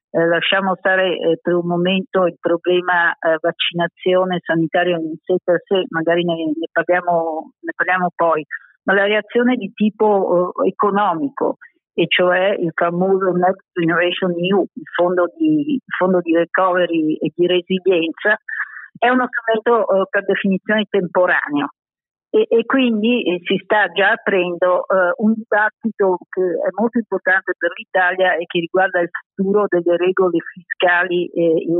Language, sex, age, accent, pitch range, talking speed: Italian, female, 50-69, native, 175-205 Hz, 150 wpm